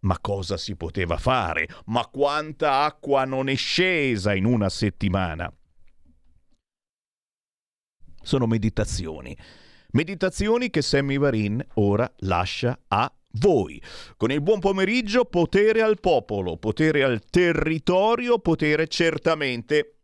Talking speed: 110 wpm